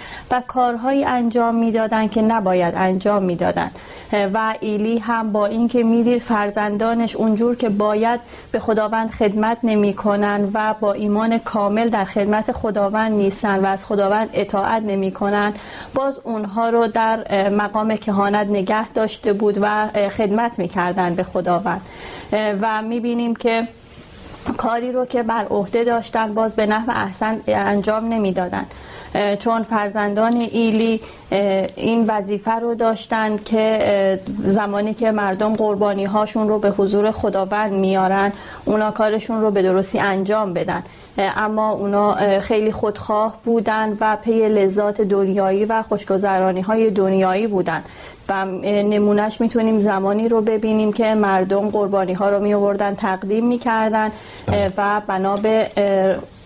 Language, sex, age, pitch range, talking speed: Persian, female, 30-49, 200-225 Hz, 130 wpm